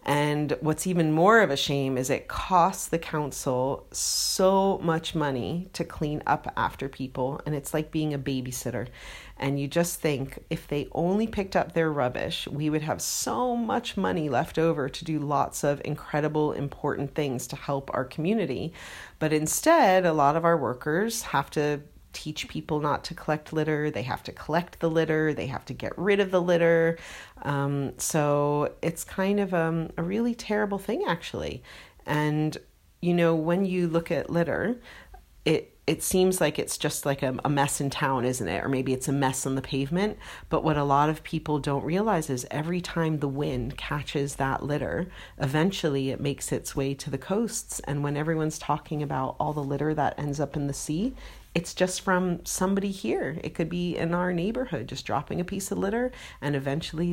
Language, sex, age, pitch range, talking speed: English, female, 40-59, 140-170 Hz, 190 wpm